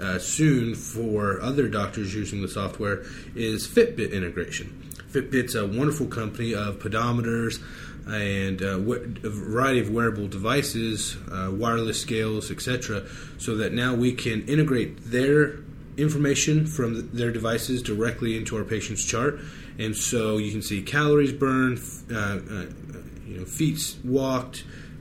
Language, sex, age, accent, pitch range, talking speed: English, male, 30-49, American, 105-125 Hz, 135 wpm